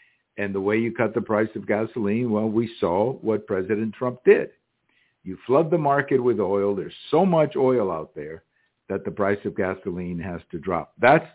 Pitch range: 105-125 Hz